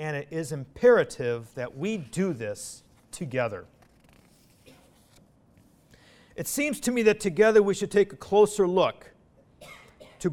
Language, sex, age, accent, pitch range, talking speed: English, male, 50-69, American, 145-200 Hz, 130 wpm